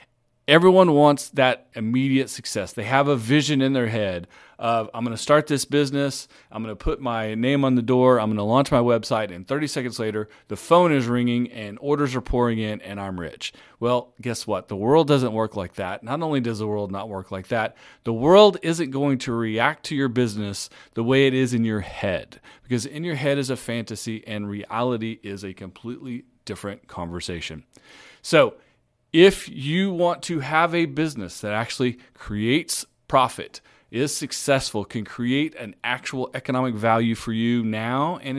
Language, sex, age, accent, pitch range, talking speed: English, male, 40-59, American, 110-140 Hz, 190 wpm